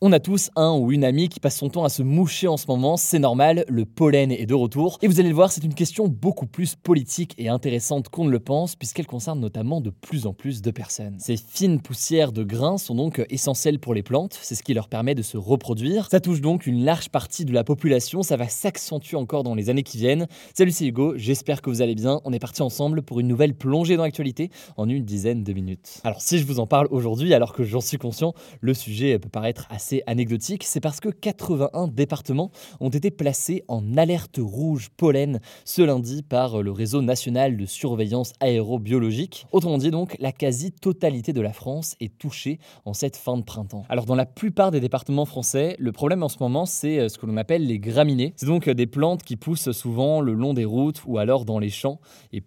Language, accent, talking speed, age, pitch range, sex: French, French, 230 wpm, 20-39, 120-155 Hz, male